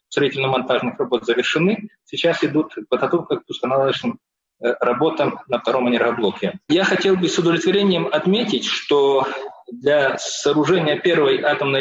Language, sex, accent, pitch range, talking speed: Russian, male, native, 155-205 Hz, 115 wpm